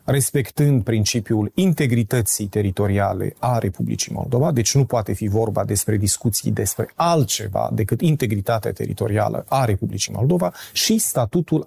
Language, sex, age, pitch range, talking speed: Romanian, male, 30-49, 105-130 Hz, 125 wpm